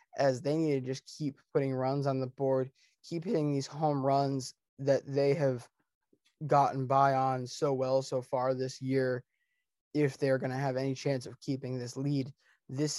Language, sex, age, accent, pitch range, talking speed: English, male, 20-39, American, 135-150 Hz, 185 wpm